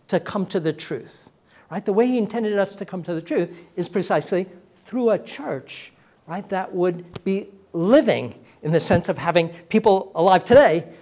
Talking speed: 185 wpm